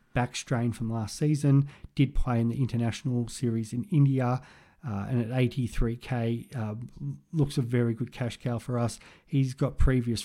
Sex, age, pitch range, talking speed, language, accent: male, 40-59, 115-130 Hz, 170 wpm, English, Australian